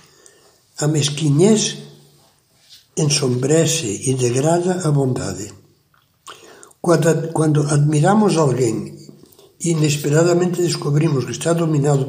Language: Portuguese